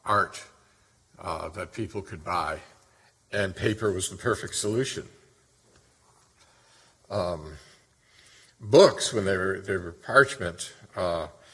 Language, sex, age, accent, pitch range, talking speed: English, male, 60-79, American, 95-115 Hz, 110 wpm